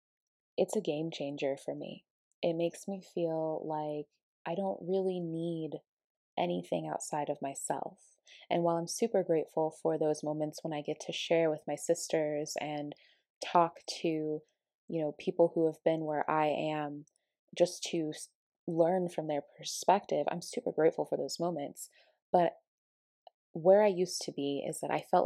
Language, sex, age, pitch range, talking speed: English, female, 20-39, 150-175 Hz, 165 wpm